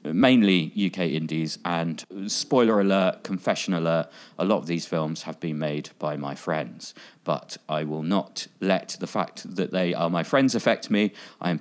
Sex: male